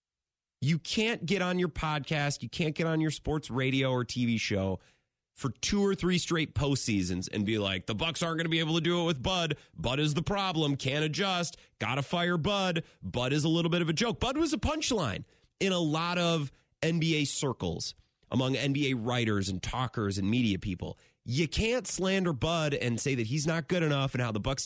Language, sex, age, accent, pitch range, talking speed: English, male, 30-49, American, 105-165 Hz, 215 wpm